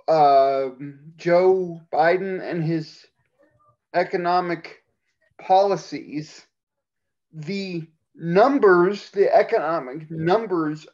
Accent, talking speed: American, 65 wpm